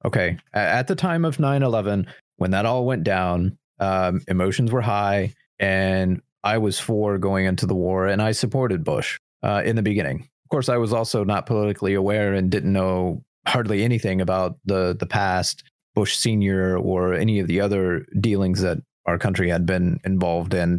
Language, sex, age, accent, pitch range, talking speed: English, male, 30-49, American, 95-115 Hz, 185 wpm